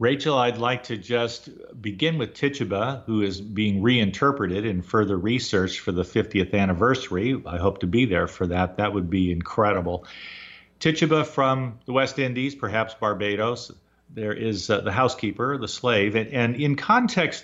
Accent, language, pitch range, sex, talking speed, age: American, English, 100-135 Hz, male, 165 wpm, 50-69